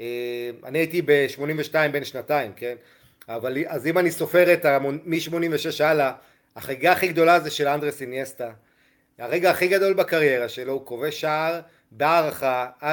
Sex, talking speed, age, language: male, 145 wpm, 30-49, Hebrew